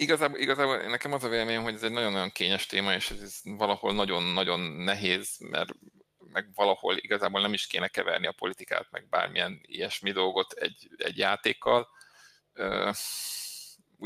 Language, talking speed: Hungarian, 150 wpm